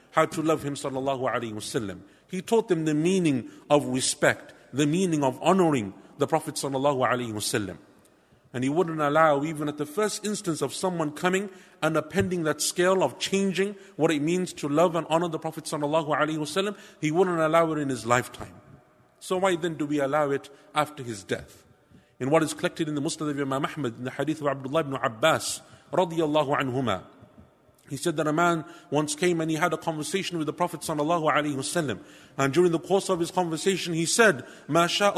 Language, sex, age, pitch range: English, male, 50-69, 145-180 Hz